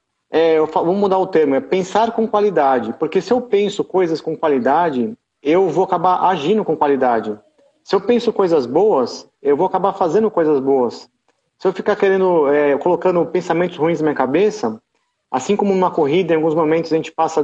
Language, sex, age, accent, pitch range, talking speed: Portuguese, male, 40-59, Brazilian, 155-185 Hz, 185 wpm